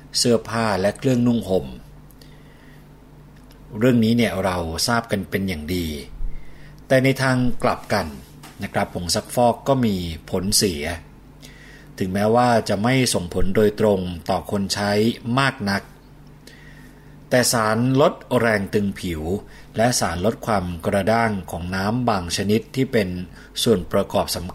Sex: male